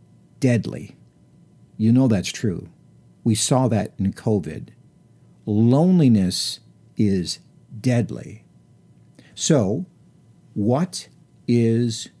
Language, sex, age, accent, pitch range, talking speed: English, male, 60-79, American, 105-140 Hz, 80 wpm